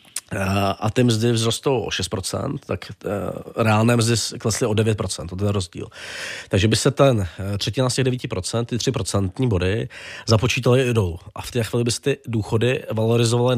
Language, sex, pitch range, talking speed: Czech, male, 110-125 Hz, 175 wpm